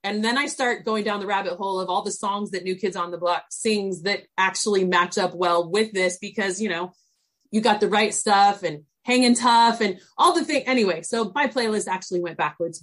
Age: 30-49